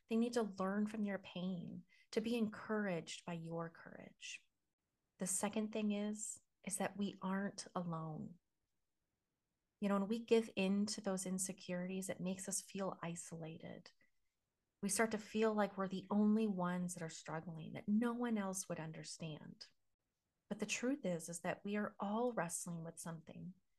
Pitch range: 175-215 Hz